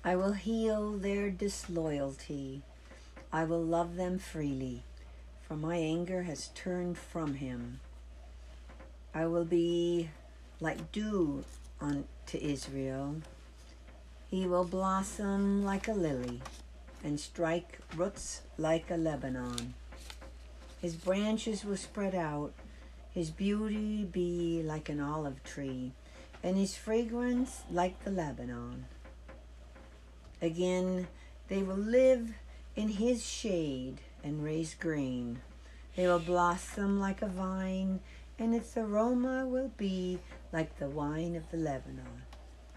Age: 60-79